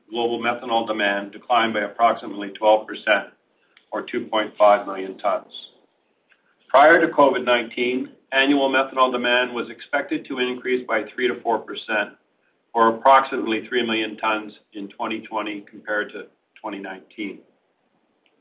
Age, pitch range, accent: 40-59, 115-130 Hz, American